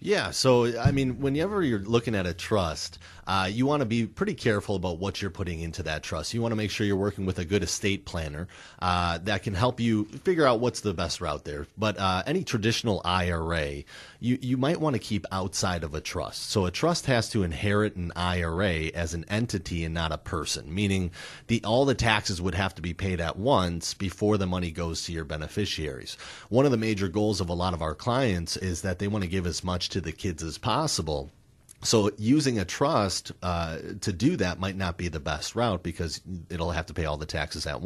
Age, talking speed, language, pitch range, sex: 30-49, 230 wpm, English, 85-115 Hz, male